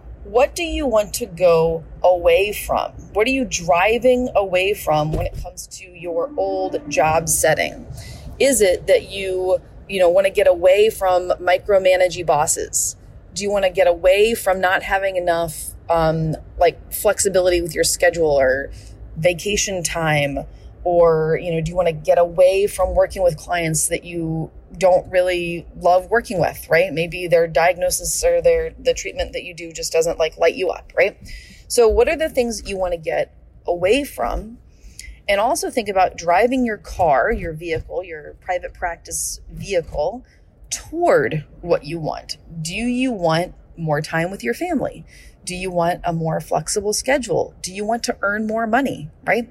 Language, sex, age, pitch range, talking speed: English, female, 30-49, 165-235 Hz, 175 wpm